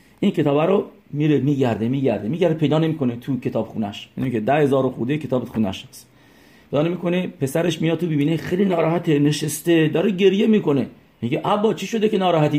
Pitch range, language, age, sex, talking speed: 120-170 Hz, English, 40-59, male, 160 wpm